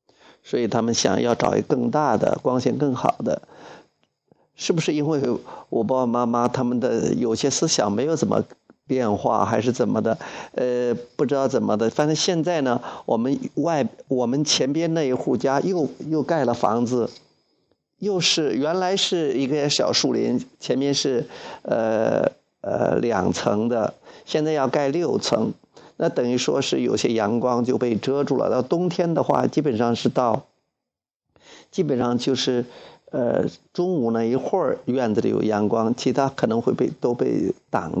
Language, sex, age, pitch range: Chinese, male, 50-69, 120-155 Hz